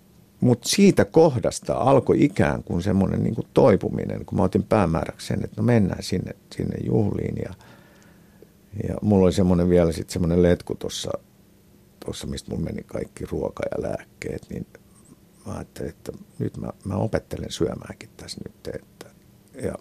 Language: Finnish